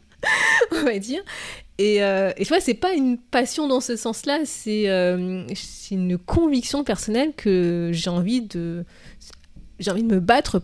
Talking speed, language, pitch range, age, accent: 170 wpm, French, 195-240 Hz, 20-39, French